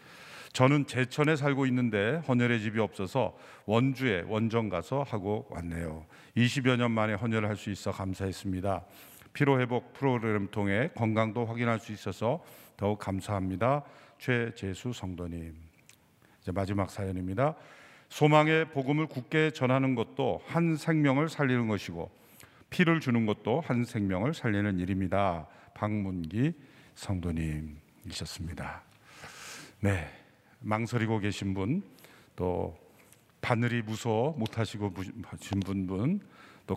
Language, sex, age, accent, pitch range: Korean, male, 50-69, native, 95-125 Hz